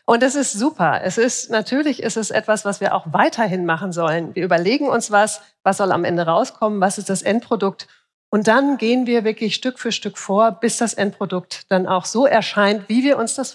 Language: German